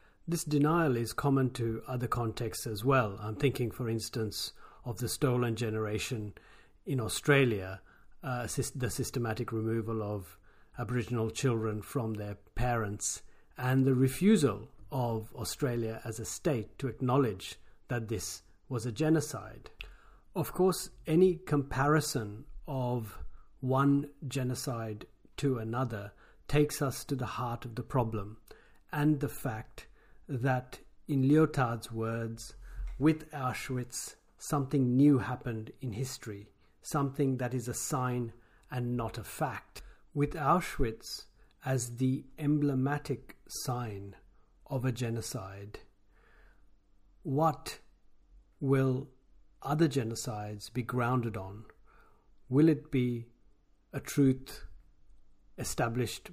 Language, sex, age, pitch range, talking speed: English, male, 50-69, 110-135 Hz, 115 wpm